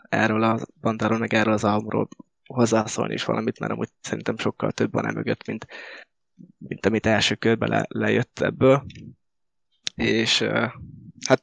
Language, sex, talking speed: Hungarian, male, 140 wpm